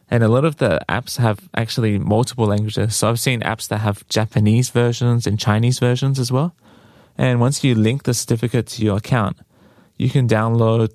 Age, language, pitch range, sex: 20-39, Korean, 105-120 Hz, male